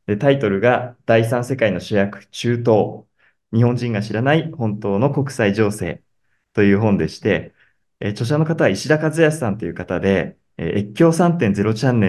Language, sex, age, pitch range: Japanese, male, 20-39, 100-130 Hz